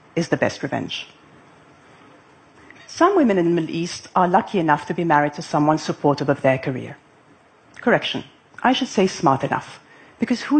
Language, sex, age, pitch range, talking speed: English, female, 40-59, 145-215 Hz, 170 wpm